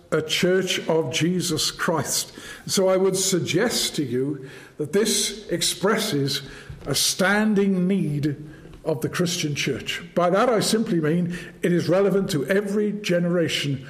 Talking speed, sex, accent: 140 wpm, male, British